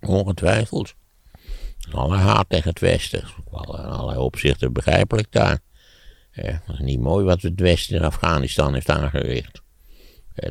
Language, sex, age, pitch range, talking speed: Dutch, male, 60-79, 65-95 Hz, 130 wpm